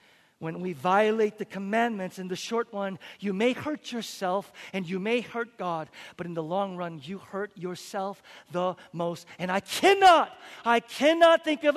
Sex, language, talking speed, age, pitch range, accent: male, English, 180 wpm, 40-59, 200-300 Hz, American